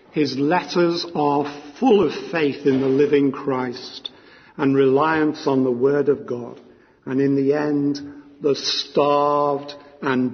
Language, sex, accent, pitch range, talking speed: English, male, British, 130-145 Hz, 140 wpm